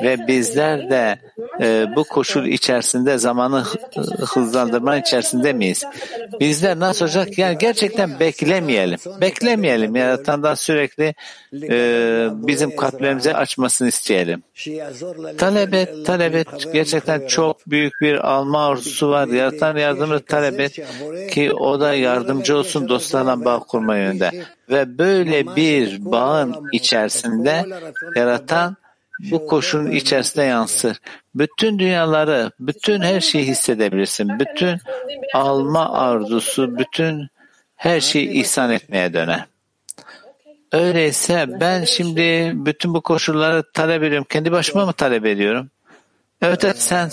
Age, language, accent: 60-79, Turkish, native